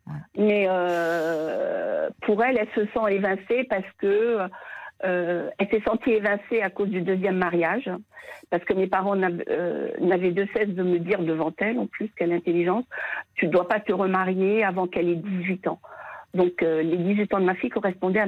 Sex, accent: female, French